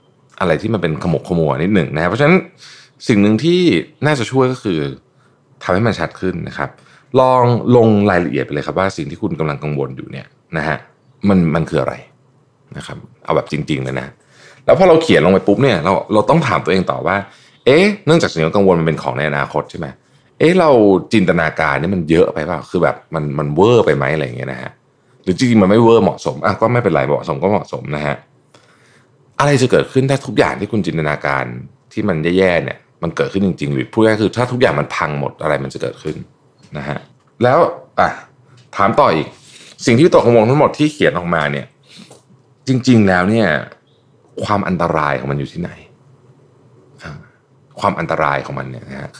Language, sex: Thai, male